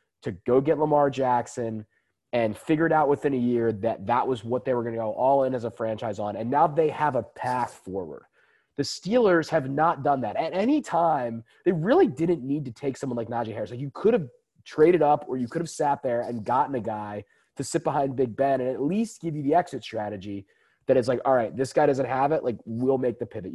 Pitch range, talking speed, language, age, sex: 120-150 Hz, 245 wpm, English, 20-39, male